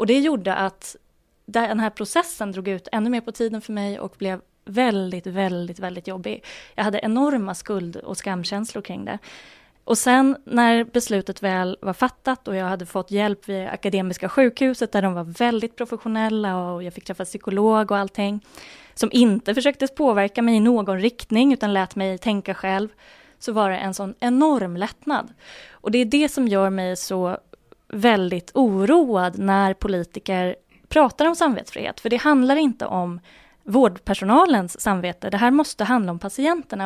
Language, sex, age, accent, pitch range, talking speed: Swedish, female, 20-39, native, 195-255 Hz, 170 wpm